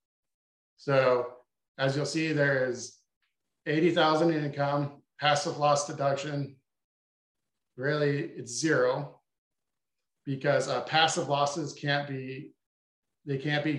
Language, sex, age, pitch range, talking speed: English, male, 50-69, 130-150 Hz, 110 wpm